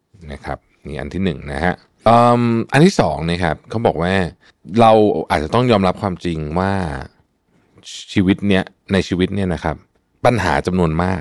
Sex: male